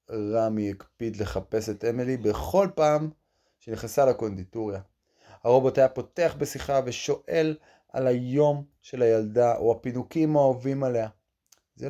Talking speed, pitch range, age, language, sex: 115 wpm, 100-130 Hz, 30-49, Hebrew, male